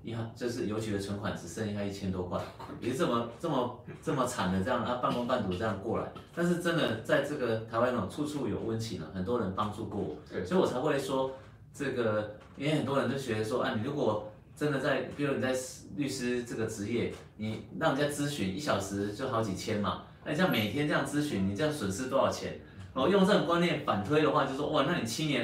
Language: Chinese